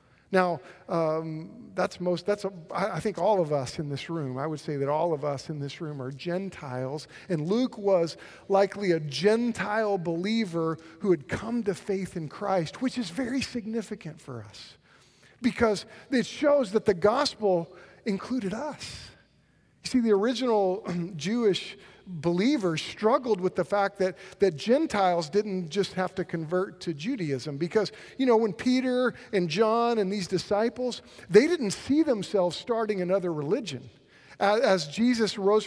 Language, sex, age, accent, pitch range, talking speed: English, male, 50-69, American, 170-220 Hz, 160 wpm